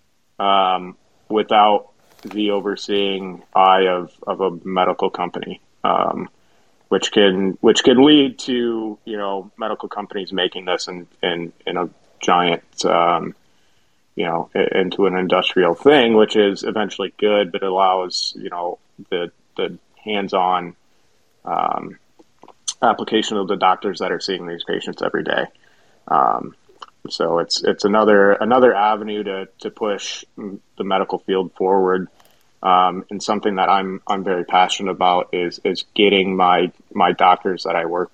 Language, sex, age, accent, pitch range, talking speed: English, male, 20-39, American, 90-105 Hz, 145 wpm